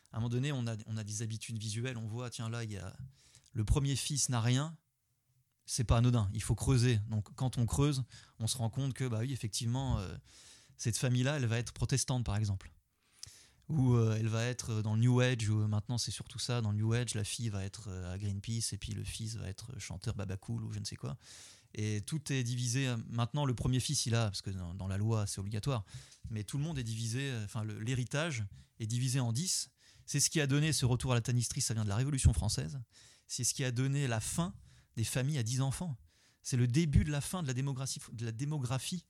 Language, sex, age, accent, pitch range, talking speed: French, male, 30-49, French, 110-130 Hz, 240 wpm